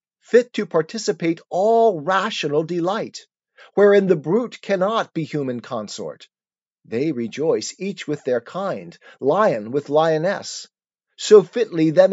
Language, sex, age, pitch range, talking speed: English, male, 40-59, 155-205 Hz, 125 wpm